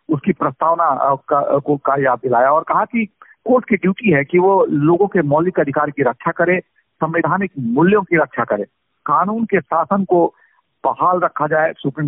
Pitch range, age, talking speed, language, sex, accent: 130-175 Hz, 50-69, 180 wpm, Hindi, male, native